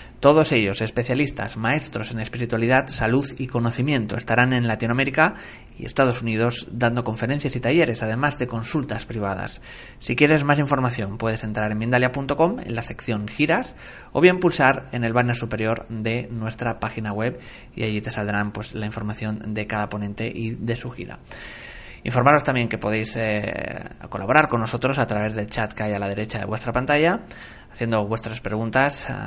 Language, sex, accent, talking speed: Spanish, male, Spanish, 170 wpm